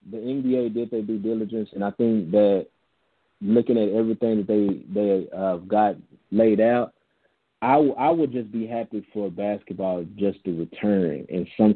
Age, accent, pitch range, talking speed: 20-39, American, 95-110 Hz, 160 wpm